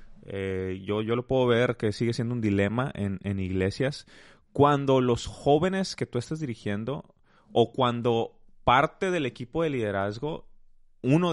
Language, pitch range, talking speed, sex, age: Spanish, 100-125 Hz, 155 wpm, male, 20-39